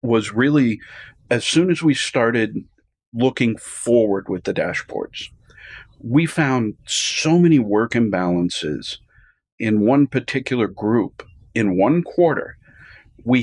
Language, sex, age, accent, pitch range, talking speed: English, male, 50-69, American, 115-150 Hz, 115 wpm